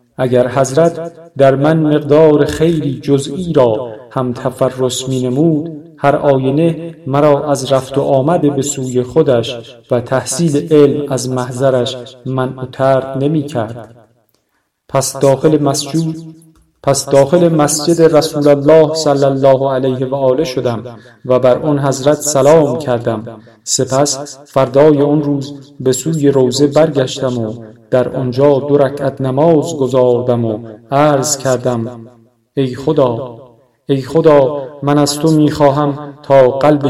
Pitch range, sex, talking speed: 125-145 Hz, male, 125 wpm